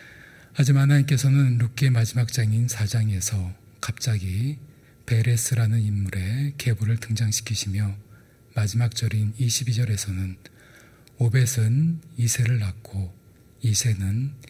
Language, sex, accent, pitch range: Korean, male, native, 105-125 Hz